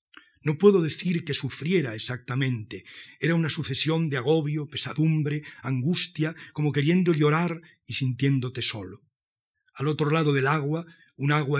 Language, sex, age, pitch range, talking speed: Spanish, male, 40-59, 125-155 Hz, 135 wpm